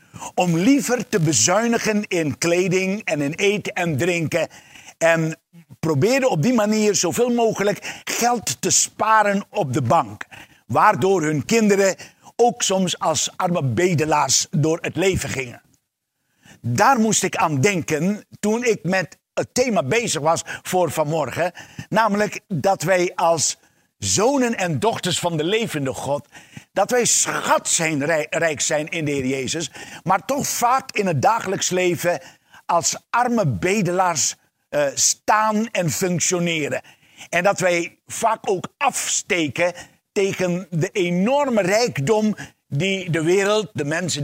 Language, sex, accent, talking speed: Dutch, male, Dutch, 135 wpm